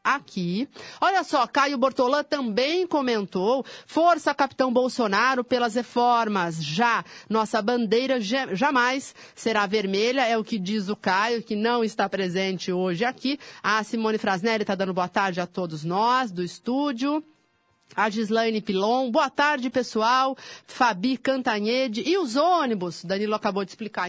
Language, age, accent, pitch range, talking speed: Portuguese, 40-59, Brazilian, 210-255 Hz, 140 wpm